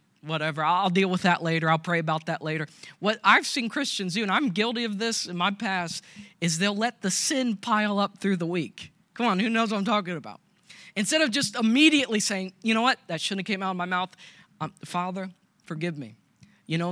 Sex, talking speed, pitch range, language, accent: male, 225 wpm, 170-210 Hz, English, American